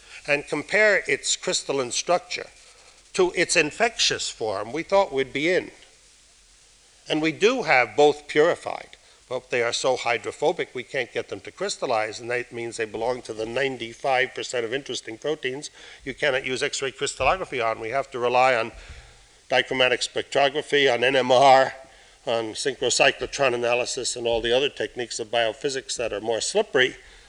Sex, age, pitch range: male, 50-69, 120-165 Hz